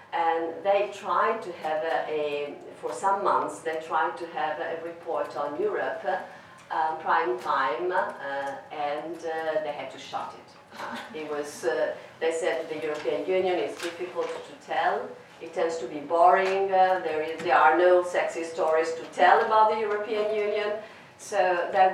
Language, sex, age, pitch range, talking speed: English, female, 40-59, 160-215 Hz, 170 wpm